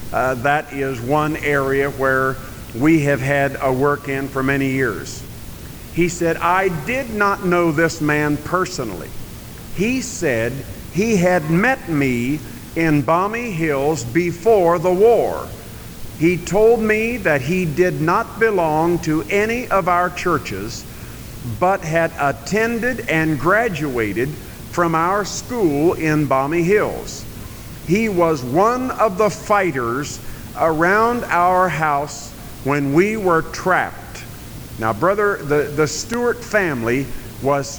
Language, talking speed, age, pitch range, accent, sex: English, 125 wpm, 50-69, 135-185 Hz, American, male